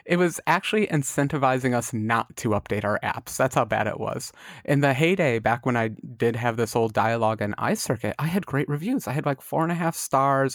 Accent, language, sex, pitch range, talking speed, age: American, English, male, 110-145 Hz, 230 wpm, 30-49